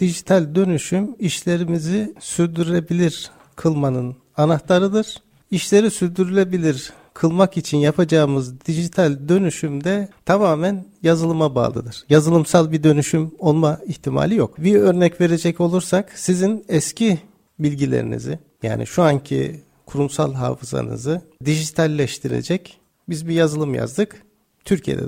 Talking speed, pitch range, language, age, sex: 100 wpm, 150-195 Hz, Turkish, 50-69, male